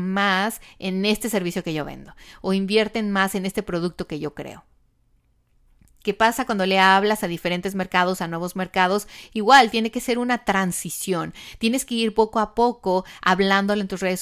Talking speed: 180 wpm